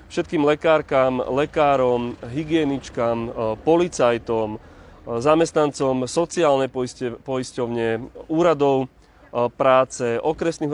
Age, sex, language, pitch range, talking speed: 30-49, male, Slovak, 125-150 Hz, 60 wpm